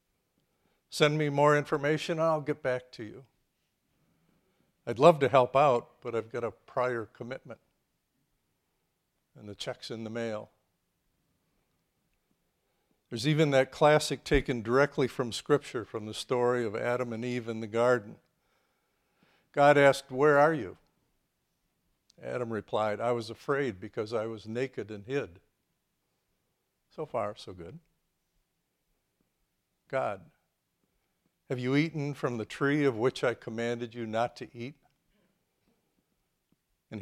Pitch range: 115-140 Hz